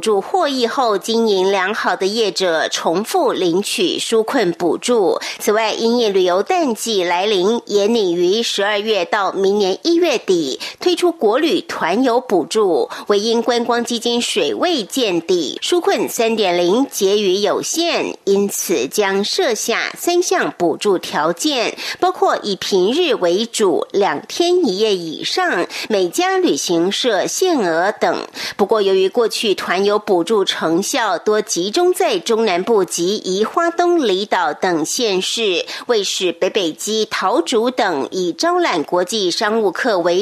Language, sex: German, female